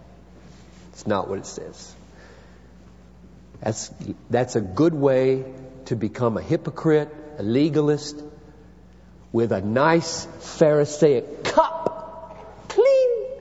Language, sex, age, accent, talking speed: English, male, 50-69, American, 100 wpm